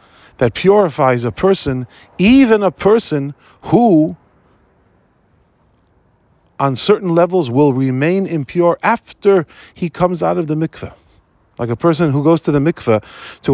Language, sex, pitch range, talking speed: English, male, 115-170 Hz, 135 wpm